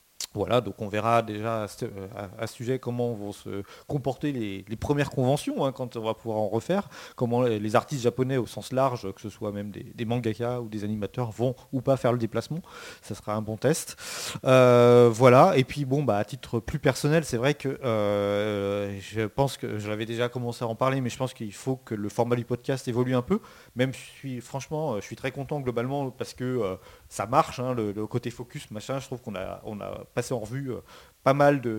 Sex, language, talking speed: male, French, 225 wpm